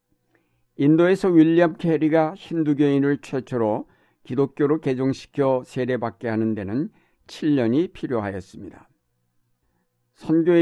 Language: Korean